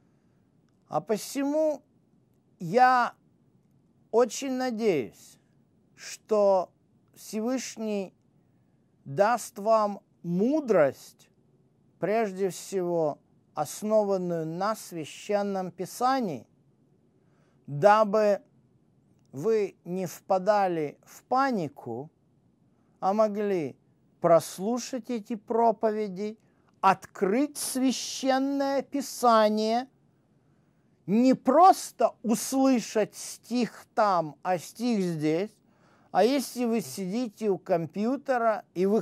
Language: Russian